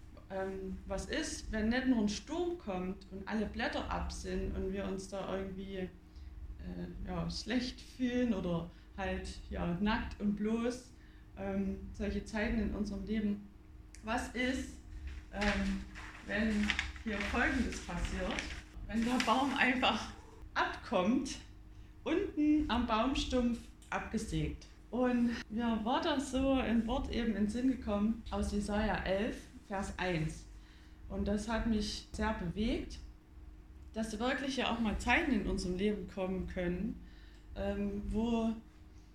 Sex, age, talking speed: female, 20-39, 130 wpm